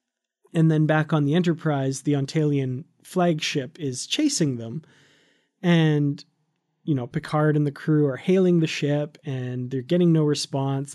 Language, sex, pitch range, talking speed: English, male, 135-160 Hz, 155 wpm